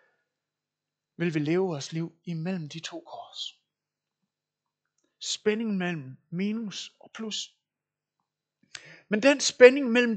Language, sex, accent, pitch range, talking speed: Danish, male, native, 165-230 Hz, 105 wpm